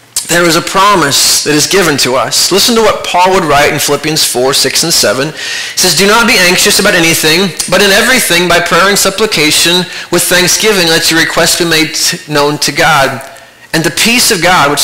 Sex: male